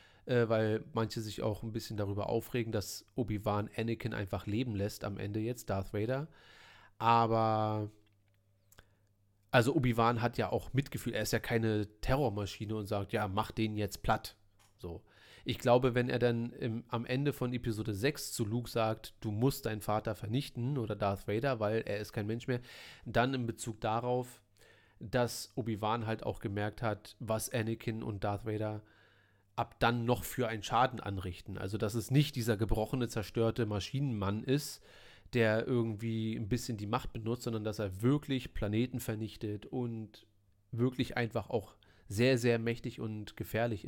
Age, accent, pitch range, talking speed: 30-49, German, 105-125 Hz, 165 wpm